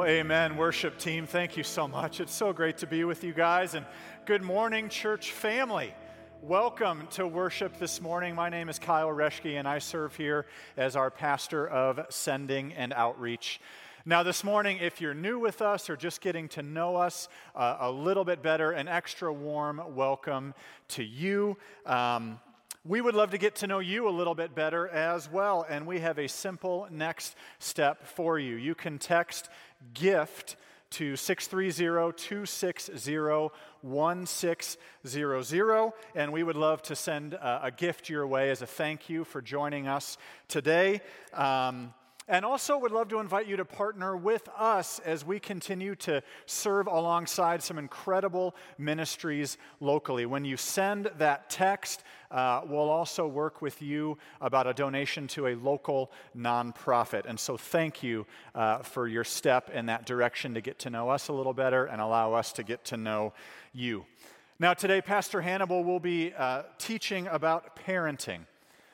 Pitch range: 135-180 Hz